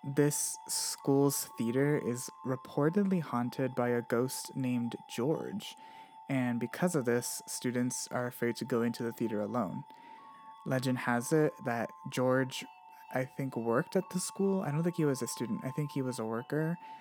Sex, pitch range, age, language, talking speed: male, 125-175 Hz, 20-39, English, 170 wpm